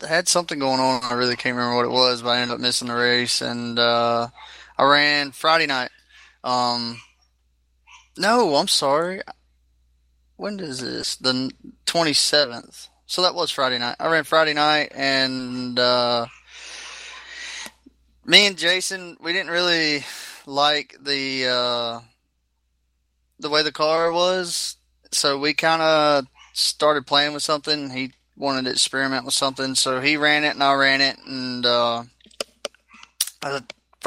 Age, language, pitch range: 20-39, English, 120-150 Hz